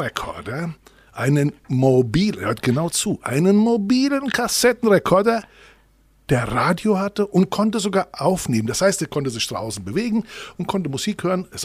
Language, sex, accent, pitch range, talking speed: German, male, German, 125-195 Hz, 145 wpm